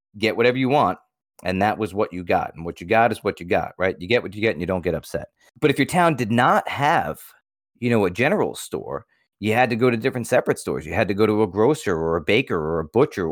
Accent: American